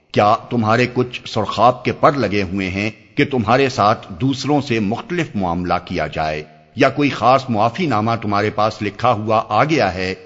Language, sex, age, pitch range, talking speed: Urdu, male, 50-69, 95-125 Hz, 170 wpm